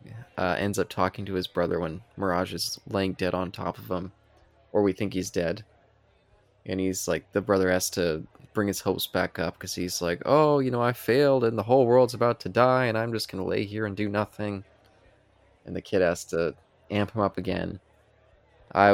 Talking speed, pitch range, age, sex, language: 210 wpm, 90-110 Hz, 20-39, male, English